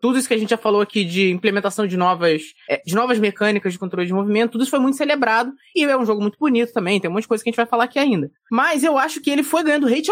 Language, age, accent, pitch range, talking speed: Portuguese, 20-39, Brazilian, 190-245 Hz, 300 wpm